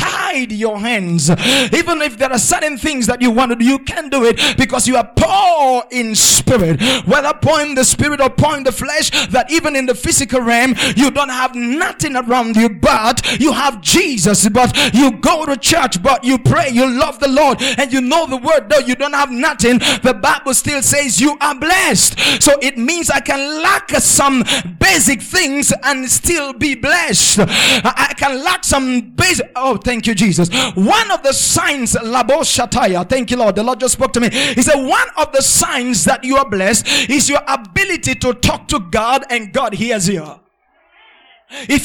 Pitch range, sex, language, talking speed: 245-295 Hz, male, English, 200 wpm